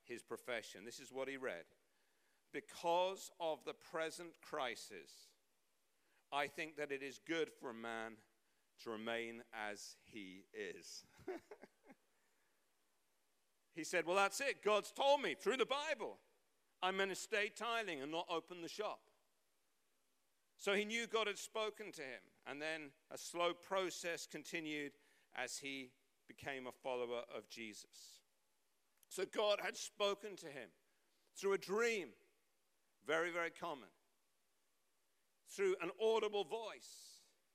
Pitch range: 155-225 Hz